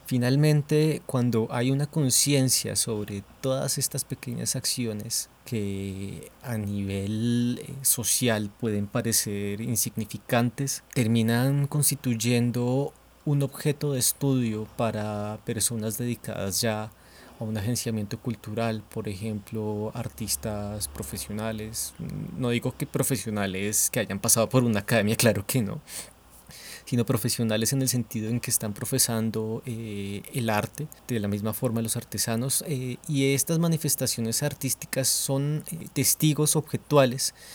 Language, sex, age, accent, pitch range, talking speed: Spanish, male, 20-39, Colombian, 110-135 Hz, 120 wpm